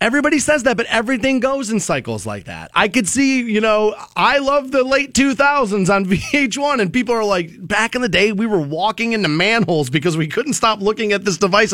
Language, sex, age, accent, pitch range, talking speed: English, male, 30-49, American, 180-250 Hz, 220 wpm